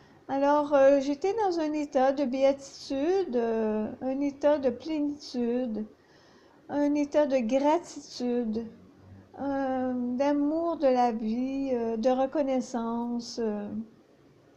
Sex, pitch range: female, 240-290 Hz